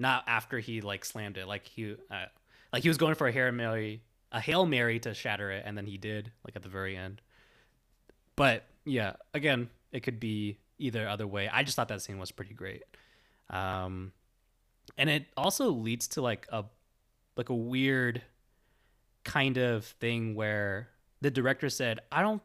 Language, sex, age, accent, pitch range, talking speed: English, male, 20-39, American, 105-125 Hz, 185 wpm